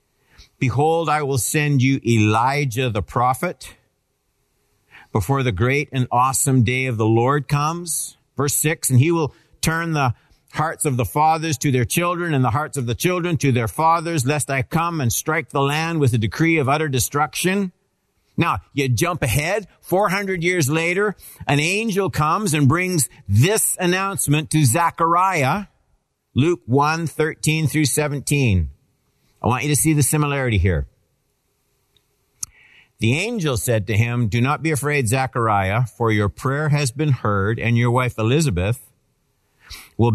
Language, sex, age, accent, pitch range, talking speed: English, male, 50-69, American, 125-155 Hz, 155 wpm